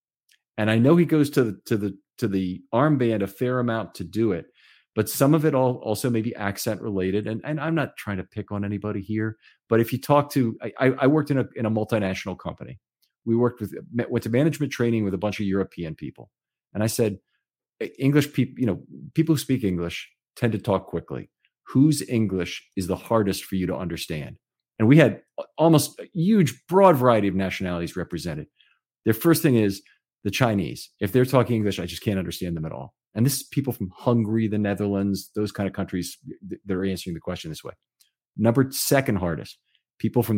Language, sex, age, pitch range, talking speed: English, male, 40-59, 100-125 Hz, 210 wpm